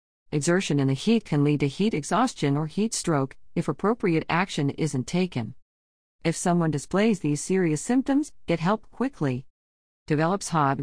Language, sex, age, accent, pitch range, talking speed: English, female, 40-59, American, 140-195 Hz, 155 wpm